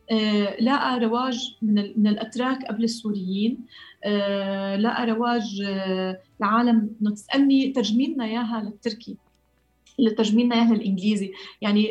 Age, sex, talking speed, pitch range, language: 30-49, female, 105 wpm, 215-265 Hz, Arabic